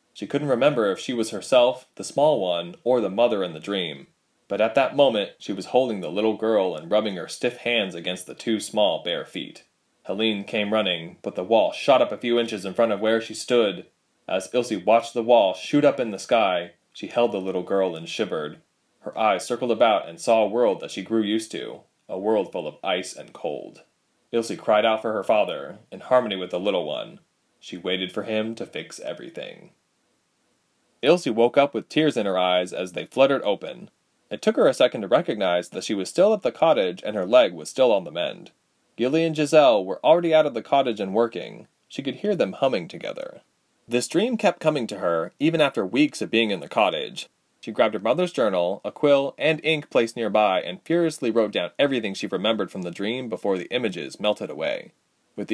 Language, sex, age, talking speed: English, male, 20-39, 220 wpm